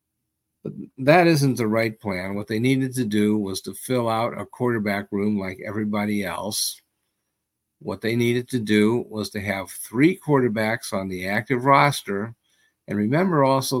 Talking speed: 160 wpm